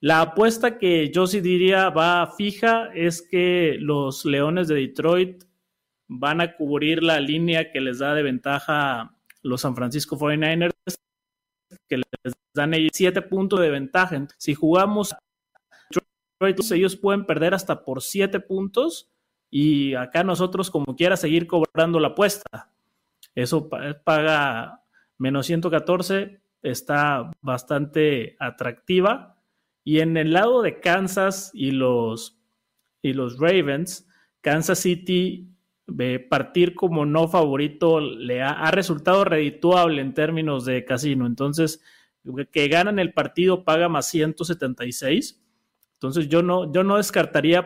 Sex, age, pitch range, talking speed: male, 30-49, 145-180 Hz, 130 wpm